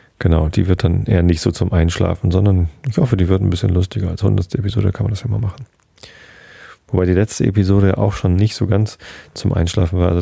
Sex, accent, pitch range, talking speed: male, German, 90-105 Hz, 235 wpm